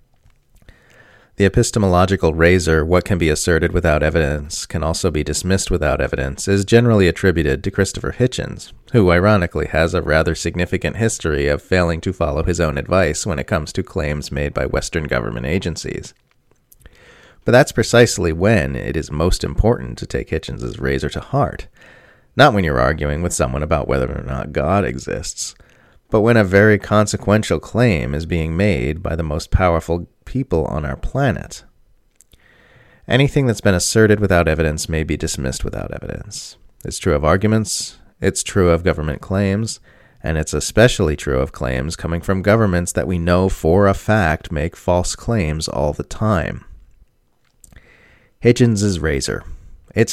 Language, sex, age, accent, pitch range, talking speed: English, male, 30-49, American, 80-100 Hz, 160 wpm